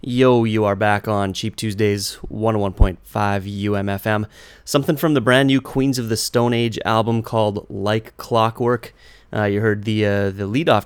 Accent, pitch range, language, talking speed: American, 100-115 Hz, English, 165 wpm